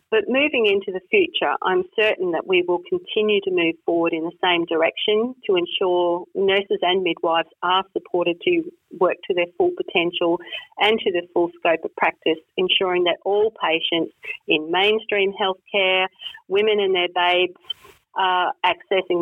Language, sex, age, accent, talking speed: English, female, 40-59, Australian, 160 wpm